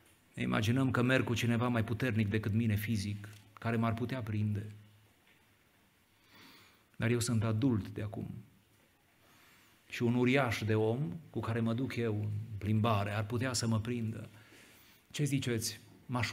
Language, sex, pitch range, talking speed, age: Romanian, male, 110-170 Hz, 150 wpm, 30-49